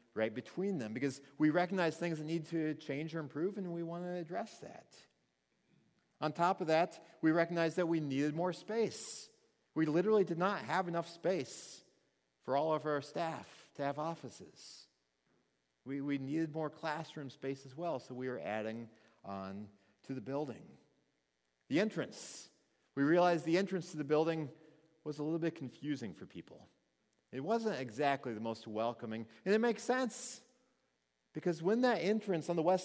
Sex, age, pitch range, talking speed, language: male, 40-59, 130-175 Hz, 170 wpm, English